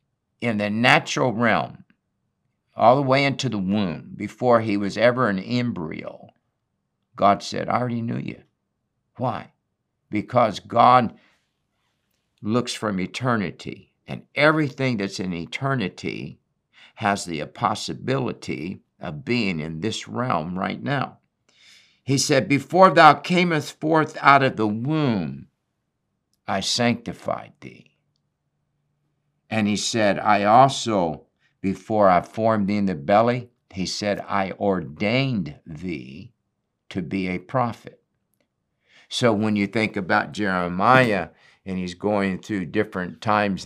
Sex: male